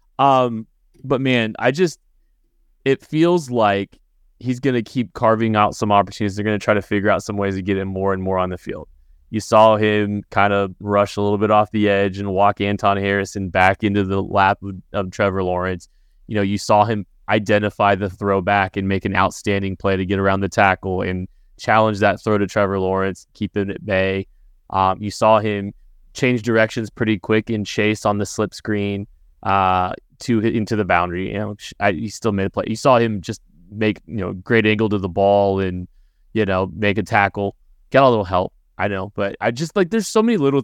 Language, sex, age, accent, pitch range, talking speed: English, male, 20-39, American, 100-115 Hz, 215 wpm